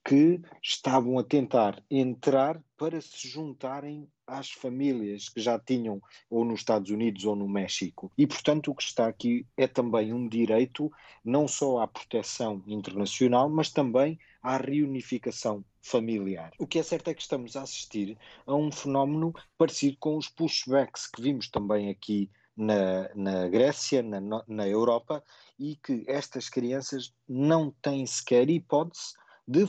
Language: Portuguese